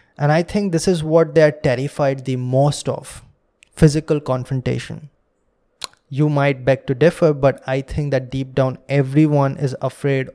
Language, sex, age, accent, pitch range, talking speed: English, male, 20-39, Indian, 135-170 Hz, 155 wpm